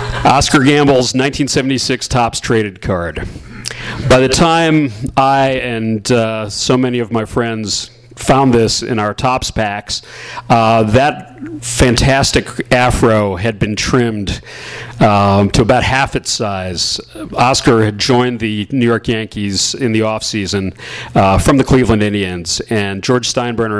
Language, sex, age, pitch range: English, male, 40-59, 105-125 Hz